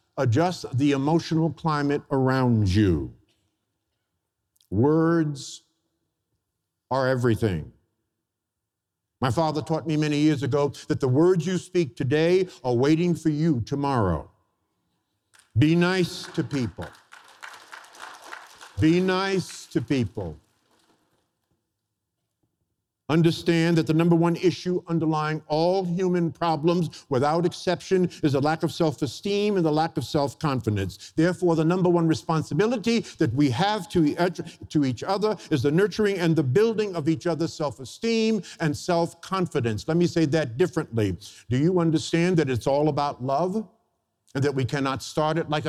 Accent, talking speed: American, 130 wpm